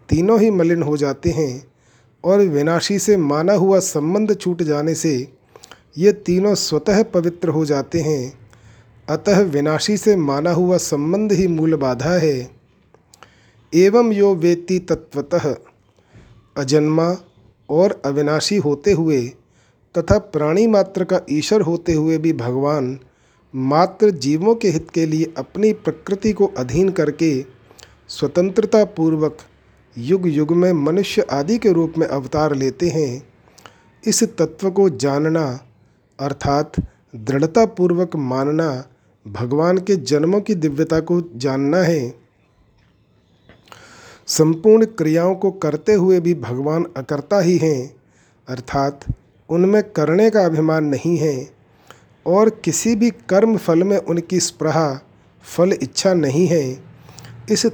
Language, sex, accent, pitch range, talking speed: Hindi, male, native, 140-185 Hz, 125 wpm